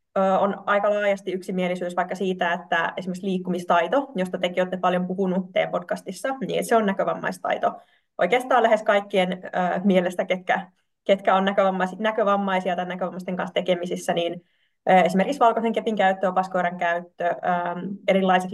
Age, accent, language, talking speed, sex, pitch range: 20-39, native, Finnish, 140 wpm, female, 185-220 Hz